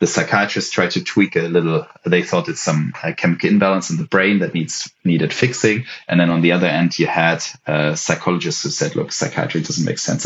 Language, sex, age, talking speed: English, male, 30-49, 220 wpm